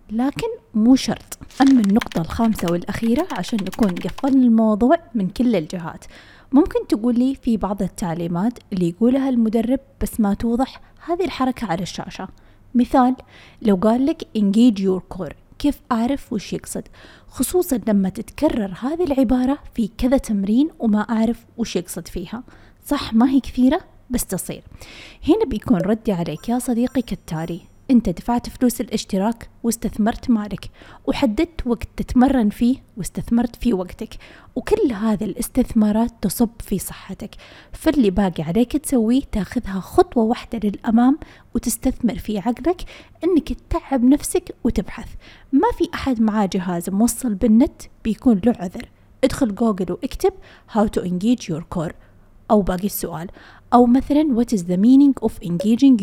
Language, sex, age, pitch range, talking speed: Arabic, female, 20-39, 205-260 Hz, 140 wpm